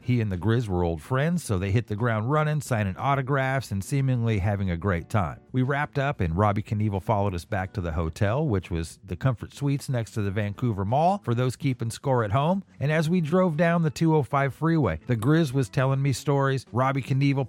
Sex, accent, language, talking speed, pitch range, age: male, American, English, 225 wpm, 100-145 Hz, 50-69